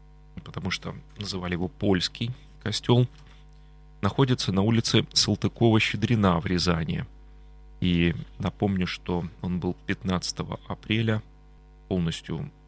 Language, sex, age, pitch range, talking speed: Russian, male, 30-49, 95-120 Hz, 95 wpm